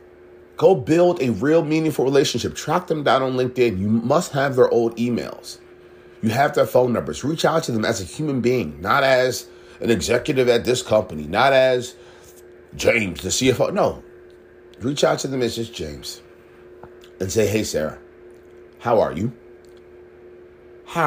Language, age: English, 40-59